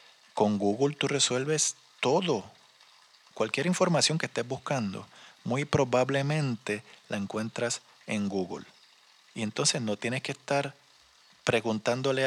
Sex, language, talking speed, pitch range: male, Spanish, 110 wpm, 105-140 Hz